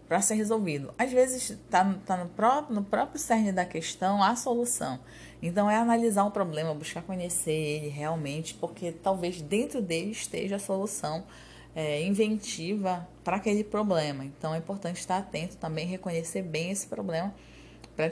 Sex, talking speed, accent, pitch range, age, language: female, 160 wpm, Brazilian, 150-195 Hz, 20-39, Portuguese